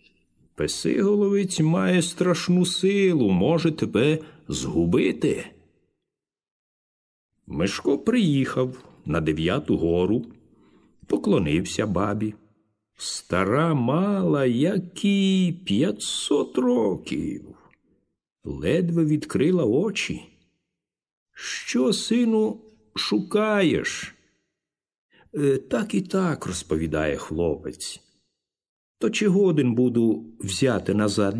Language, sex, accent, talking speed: Ukrainian, male, native, 70 wpm